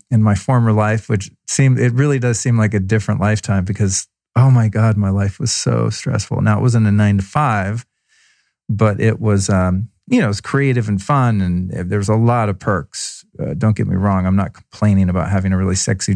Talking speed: 225 wpm